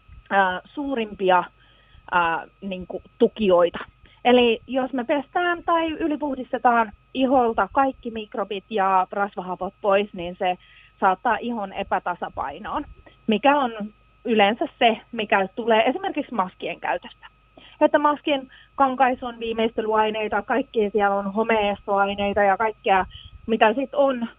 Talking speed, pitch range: 110 wpm, 190-245 Hz